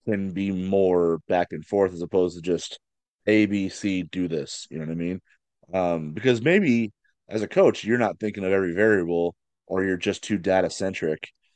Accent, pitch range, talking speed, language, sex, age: American, 90-110 Hz, 190 wpm, English, male, 30-49